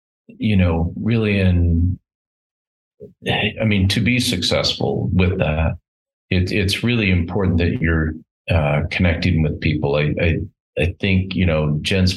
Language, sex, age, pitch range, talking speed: English, male, 40-59, 75-90 Hz, 140 wpm